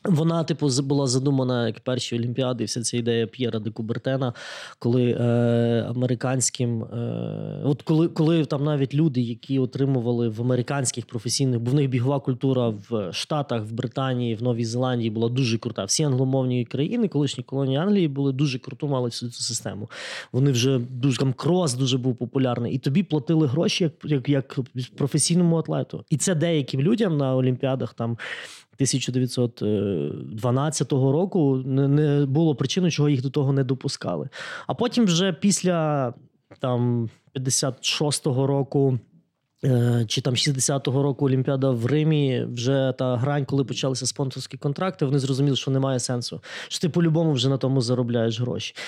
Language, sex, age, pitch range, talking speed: Ukrainian, male, 20-39, 125-155 Hz, 150 wpm